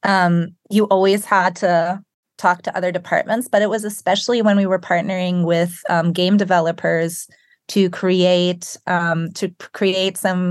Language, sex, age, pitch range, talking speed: English, female, 20-39, 170-195 Hz, 155 wpm